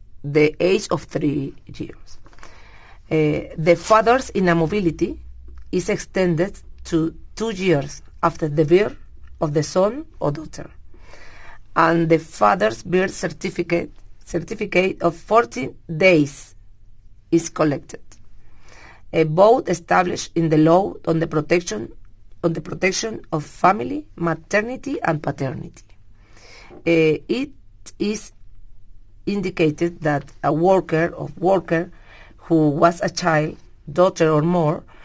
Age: 40-59